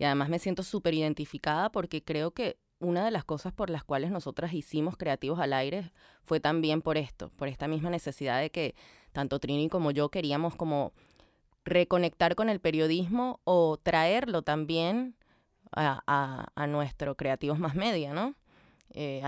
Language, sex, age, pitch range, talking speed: Spanish, female, 20-39, 150-185 Hz, 160 wpm